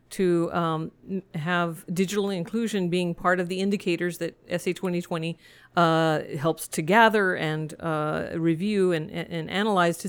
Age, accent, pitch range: 50-69, American, 170-195 Hz